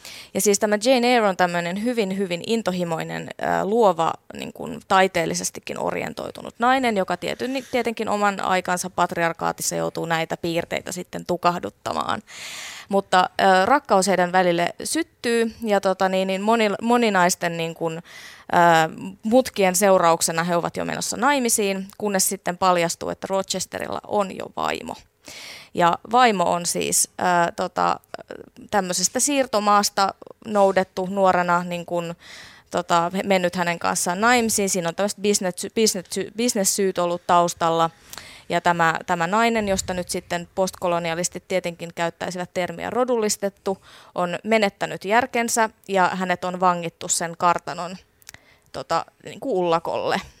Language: Finnish